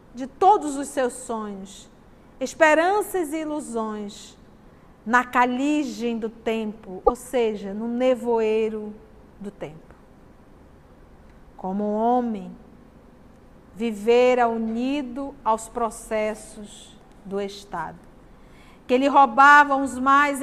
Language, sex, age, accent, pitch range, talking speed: Portuguese, female, 40-59, Brazilian, 220-275 Hz, 95 wpm